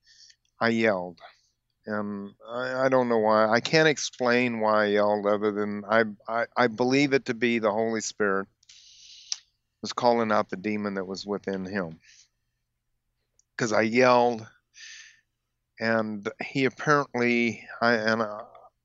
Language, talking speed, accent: English, 135 wpm, American